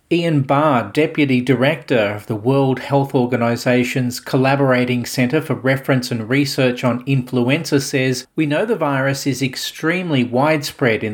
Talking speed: 140 wpm